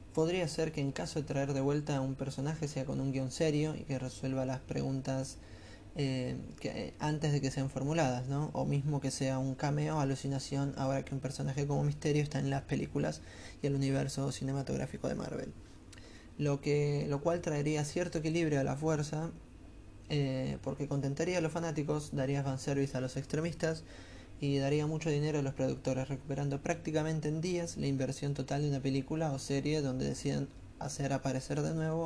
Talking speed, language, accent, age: 190 wpm, Spanish, Argentinian, 20-39